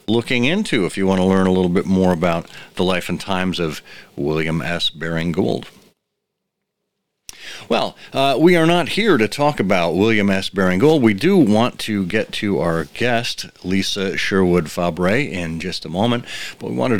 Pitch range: 90-130 Hz